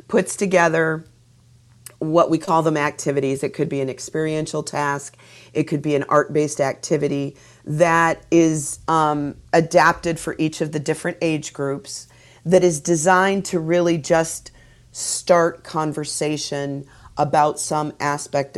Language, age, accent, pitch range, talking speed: English, 40-59, American, 150-170 Hz, 130 wpm